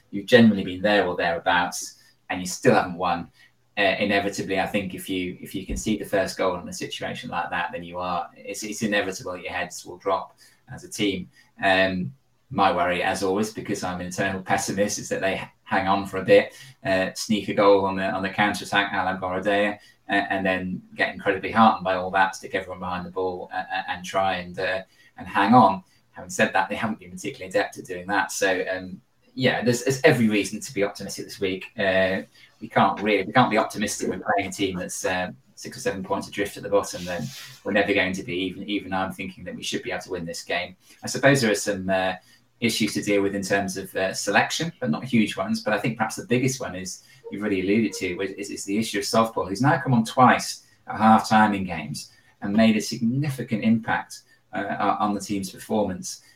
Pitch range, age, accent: 95-110 Hz, 20-39, British